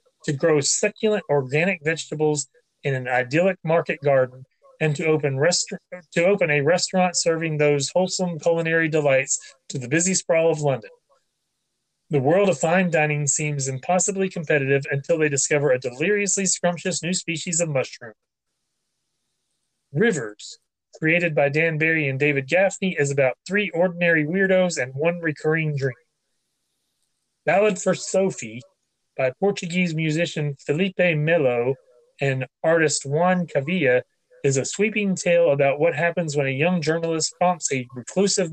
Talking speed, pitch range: 140 wpm, 145-185 Hz